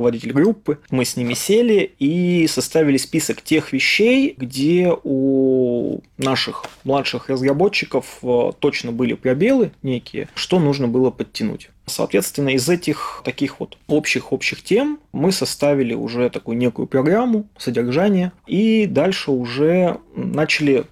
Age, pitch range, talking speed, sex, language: 20-39, 125-175 Hz, 120 wpm, male, Russian